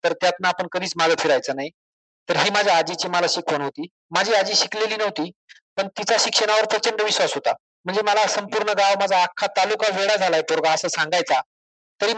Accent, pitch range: native, 170-215 Hz